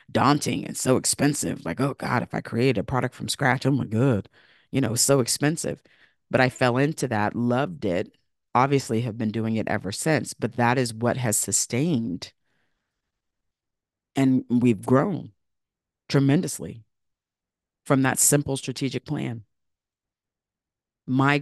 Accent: American